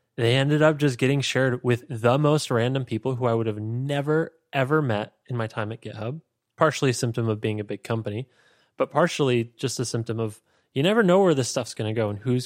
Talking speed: 230 wpm